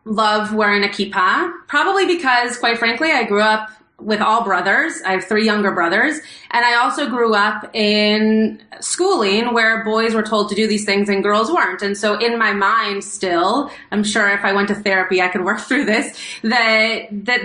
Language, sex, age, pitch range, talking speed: English, female, 30-49, 195-230 Hz, 195 wpm